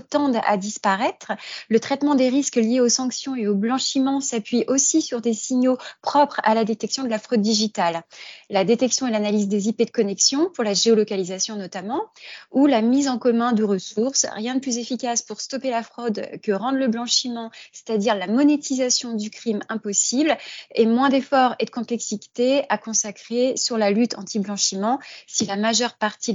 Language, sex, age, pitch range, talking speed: French, female, 30-49, 210-255 Hz, 180 wpm